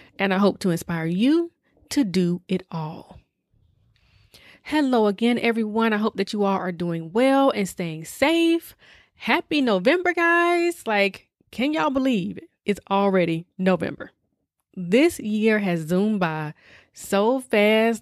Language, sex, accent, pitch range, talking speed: English, female, American, 185-270 Hz, 135 wpm